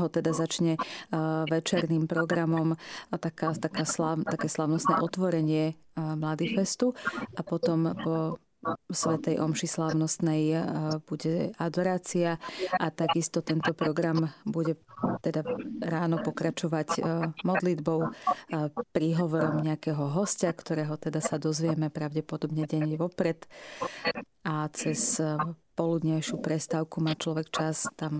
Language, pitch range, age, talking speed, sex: Slovak, 155-170 Hz, 30-49, 115 wpm, female